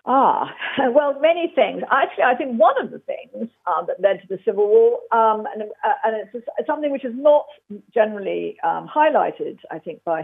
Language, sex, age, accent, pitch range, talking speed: English, female, 50-69, British, 195-290 Hz, 195 wpm